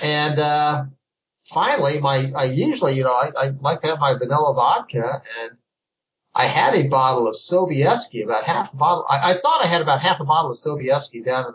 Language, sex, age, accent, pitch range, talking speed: English, male, 50-69, American, 135-170 Hz, 210 wpm